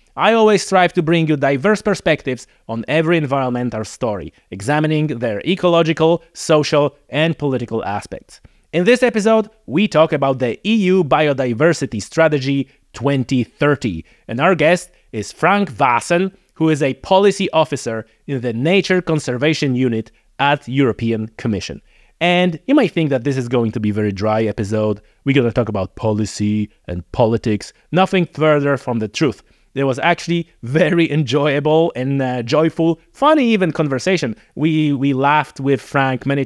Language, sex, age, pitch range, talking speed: English, male, 30-49, 125-165 Hz, 155 wpm